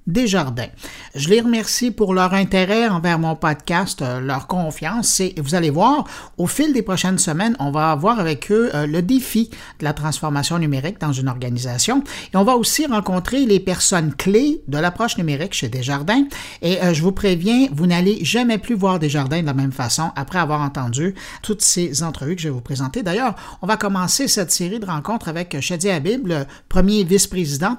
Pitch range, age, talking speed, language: 155-220 Hz, 60-79, 190 wpm, French